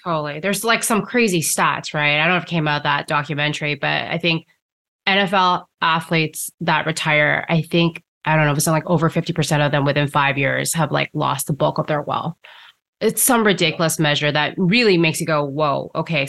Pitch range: 155-190 Hz